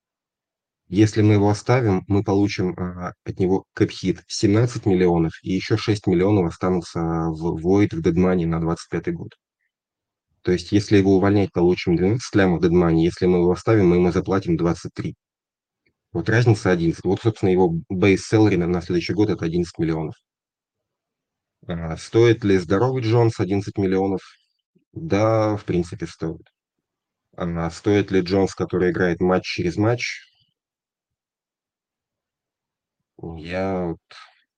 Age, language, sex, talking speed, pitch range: 30-49, Russian, male, 140 wpm, 90-105 Hz